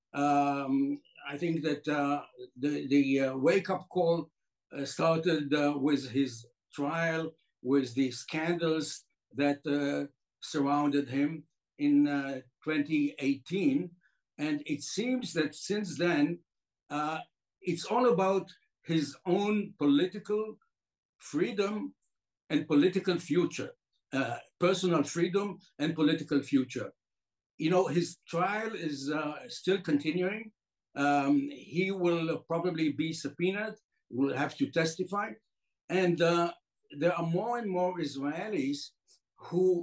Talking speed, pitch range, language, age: 115 wpm, 145-185 Hz, English, 60-79